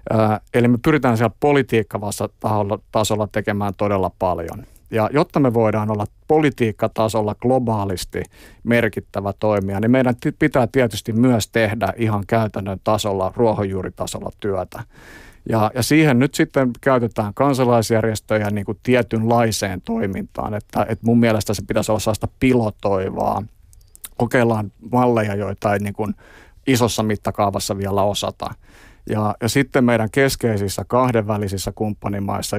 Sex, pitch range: male, 100-120 Hz